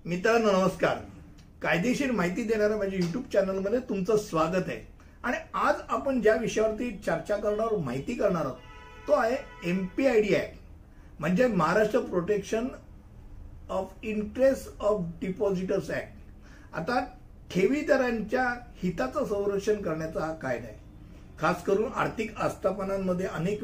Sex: male